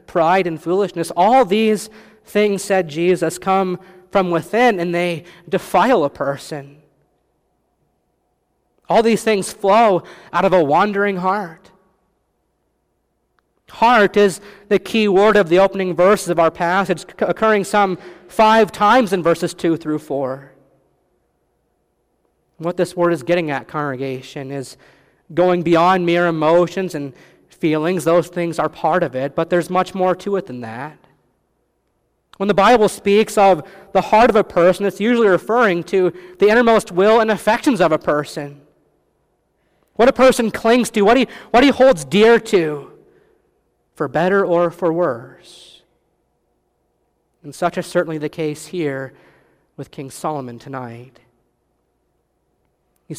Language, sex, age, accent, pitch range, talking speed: English, male, 40-59, American, 155-200 Hz, 140 wpm